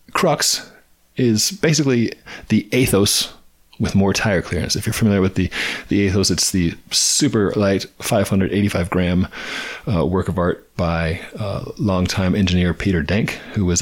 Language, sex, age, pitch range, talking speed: English, male, 30-49, 90-105 Hz, 150 wpm